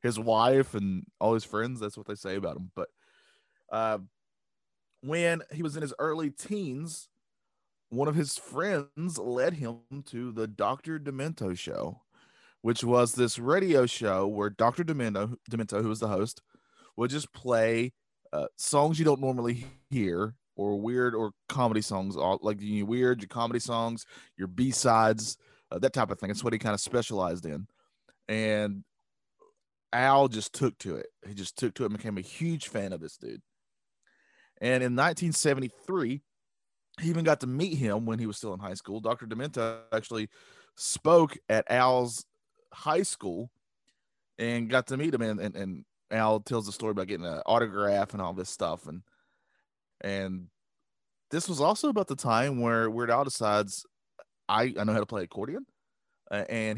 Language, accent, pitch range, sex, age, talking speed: English, American, 105-135 Hz, male, 20-39, 170 wpm